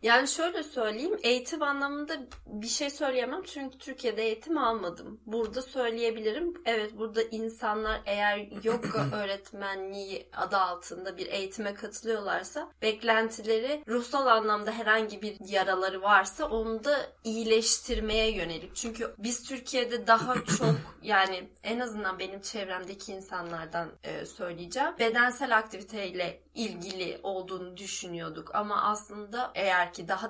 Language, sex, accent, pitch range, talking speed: Turkish, female, native, 195-240 Hz, 115 wpm